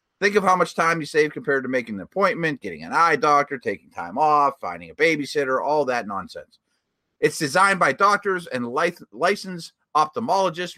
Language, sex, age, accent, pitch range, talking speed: English, male, 30-49, American, 135-180 Hz, 180 wpm